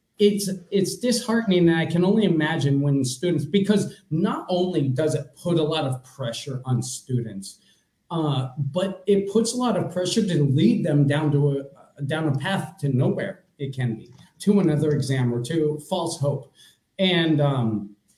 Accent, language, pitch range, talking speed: American, English, 135-175 Hz, 175 wpm